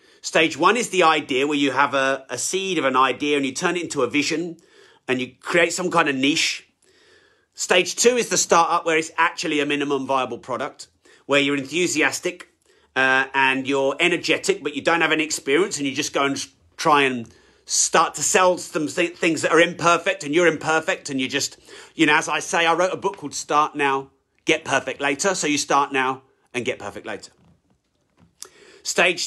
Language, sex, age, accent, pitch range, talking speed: English, male, 40-59, British, 140-175 Hz, 200 wpm